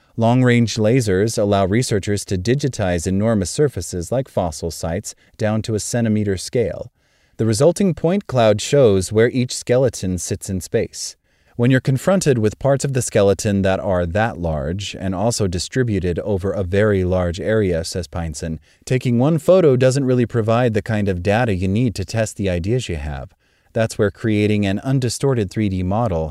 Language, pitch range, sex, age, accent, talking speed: English, 90-125 Hz, male, 30-49, American, 170 wpm